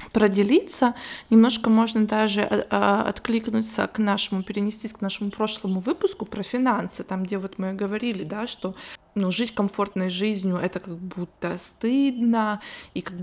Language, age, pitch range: Russian, 20-39, 190-230 Hz